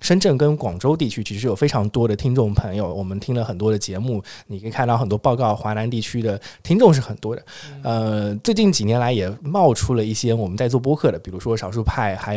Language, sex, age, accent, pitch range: Chinese, male, 20-39, native, 105-130 Hz